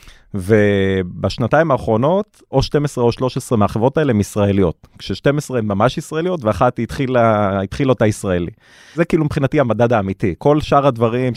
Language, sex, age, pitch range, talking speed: Hebrew, male, 30-49, 110-140 Hz, 145 wpm